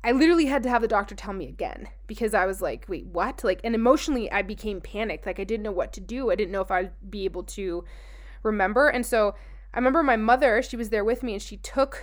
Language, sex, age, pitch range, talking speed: English, female, 20-39, 195-245 Hz, 260 wpm